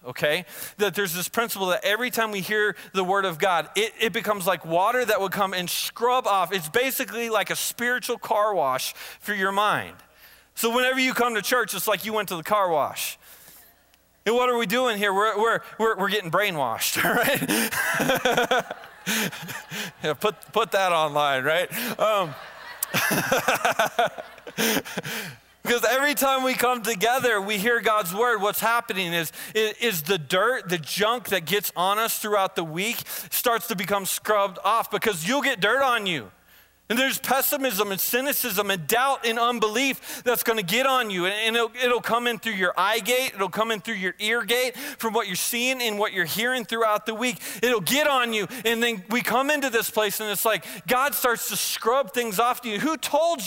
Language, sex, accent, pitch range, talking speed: English, male, American, 200-245 Hz, 190 wpm